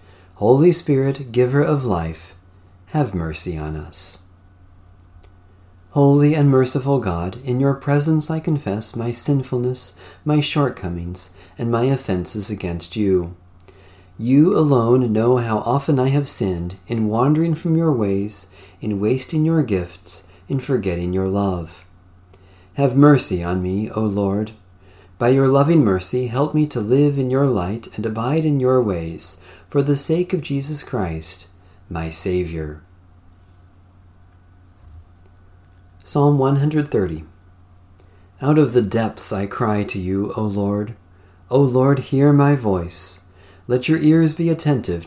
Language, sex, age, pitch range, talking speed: English, male, 40-59, 90-135 Hz, 135 wpm